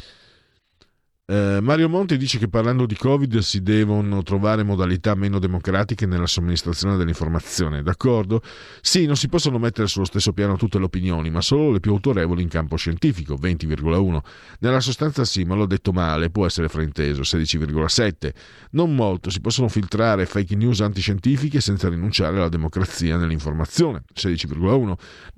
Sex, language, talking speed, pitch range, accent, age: male, Italian, 145 wpm, 85-115 Hz, native, 50-69